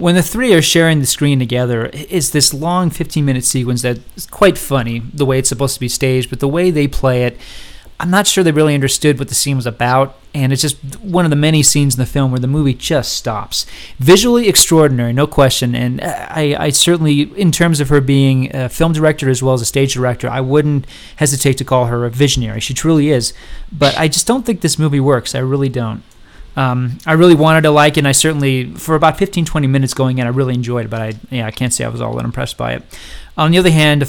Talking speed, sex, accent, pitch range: 245 wpm, male, American, 125-150 Hz